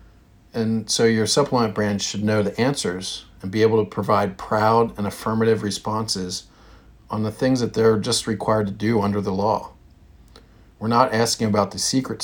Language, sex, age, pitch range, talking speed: English, male, 50-69, 100-115 Hz, 175 wpm